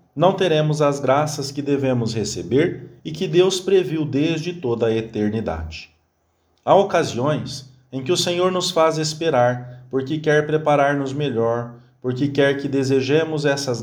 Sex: male